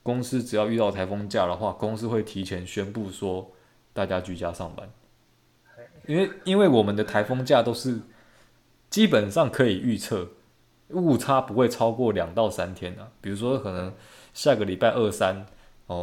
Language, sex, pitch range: Chinese, male, 100-125 Hz